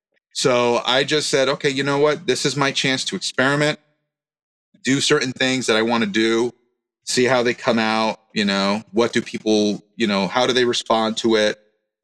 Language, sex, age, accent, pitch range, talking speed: English, male, 30-49, American, 110-140 Hz, 200 wpm